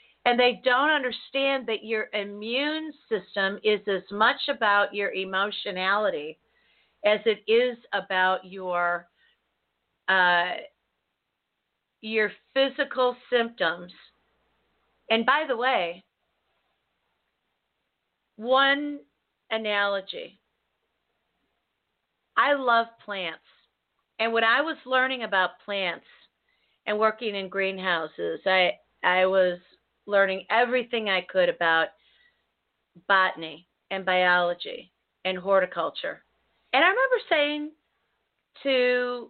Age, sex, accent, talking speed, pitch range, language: 40-59, female, American, 95 wpm, 190-250 Hz, English